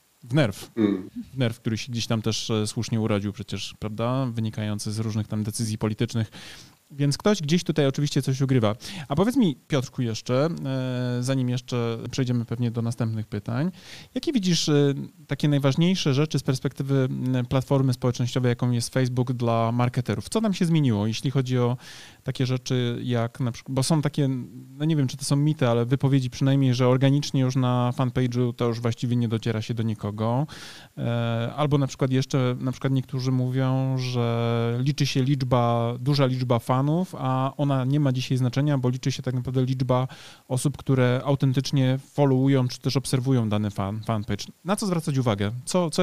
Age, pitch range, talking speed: 20-39, 120-140 Hz, 170 wpm